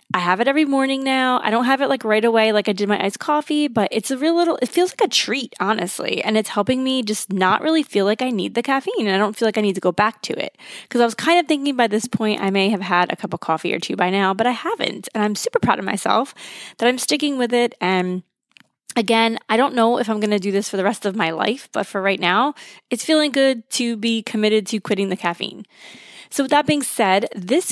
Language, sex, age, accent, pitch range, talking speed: English, female, 20-39, American, 195-245 Hz, 275 wpm